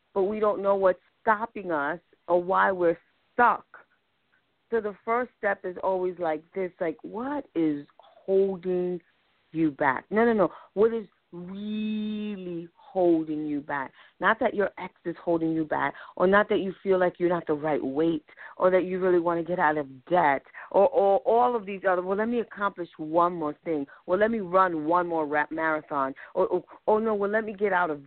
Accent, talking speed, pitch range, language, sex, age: American, 200 wpm, 155-195 Hz, English, female, 40-59